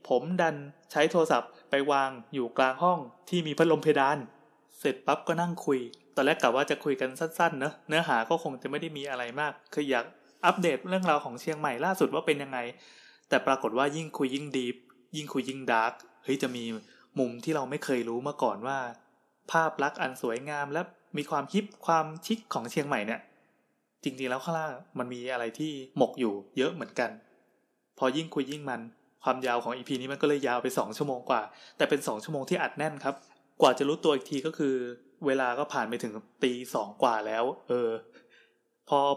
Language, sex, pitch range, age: Thai, male, 125-150 Hz, 20-39